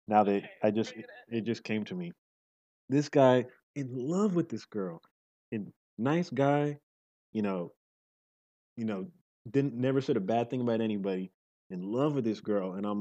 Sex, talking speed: male, 180 wpm